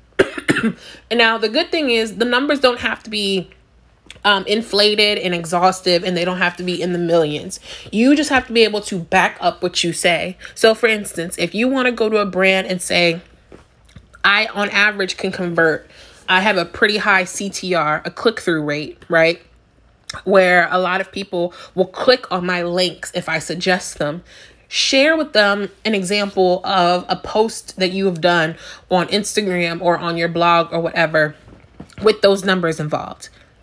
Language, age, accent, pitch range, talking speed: English, 20-39, American, 175-215 Hz, 185 wpm